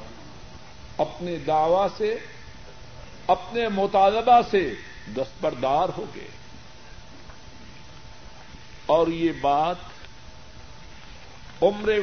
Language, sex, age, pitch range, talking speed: Urdu, male, 60-79, 155-210 Hz, 65 wpm